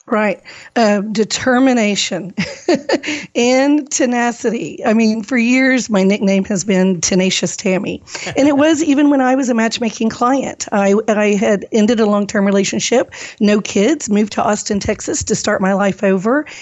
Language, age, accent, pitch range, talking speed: English, 50-69, American, 210-250 Hz, 155 wpm